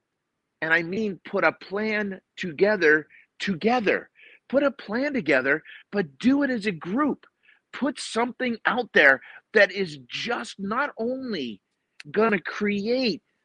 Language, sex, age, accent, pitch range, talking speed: English, male, 50-69, American, 160-215 Hz, 135 wpm